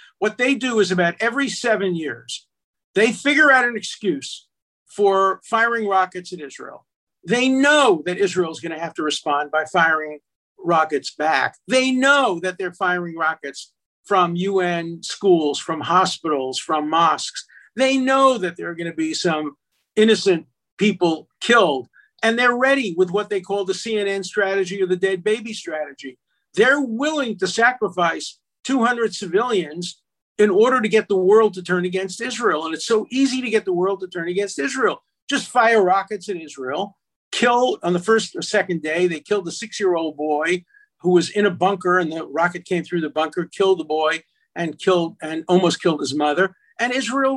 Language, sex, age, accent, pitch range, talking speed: English, male, 50-69, American, 170-220 Hz, 180 wpm